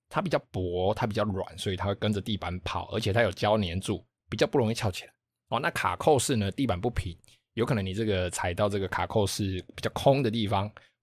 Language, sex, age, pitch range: Chinese, male, 20-39, 95-120 Hz